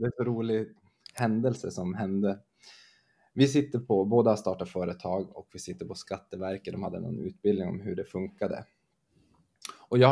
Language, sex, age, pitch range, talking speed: Swedish, male, 20-39, 100-130 Hz, 170 wpm